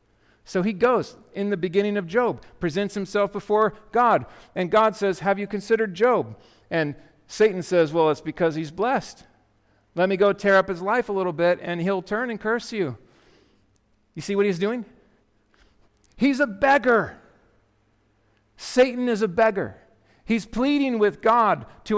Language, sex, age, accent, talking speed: English, male, 50-69, American, 165 wpm